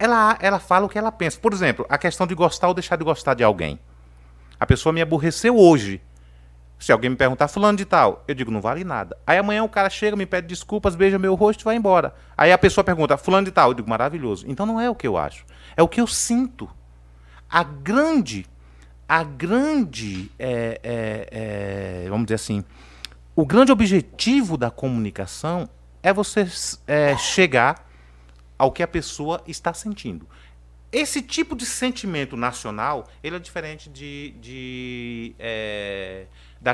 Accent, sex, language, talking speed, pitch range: Brazilian, male, Portuguese, 165 wpm, 105-175 Hz